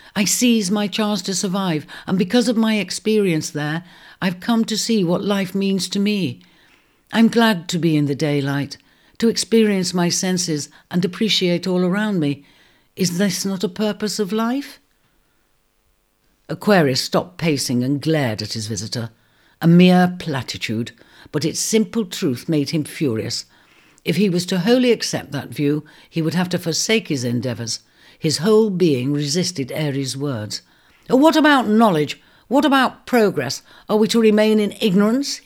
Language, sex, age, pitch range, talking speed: English, female, 60-79, 145-215 Hz, 160 wpm